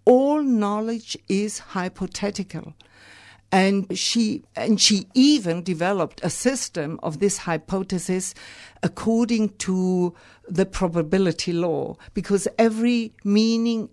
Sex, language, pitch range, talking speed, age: female, English, 165-220 Hz, 100 wpm, 60-79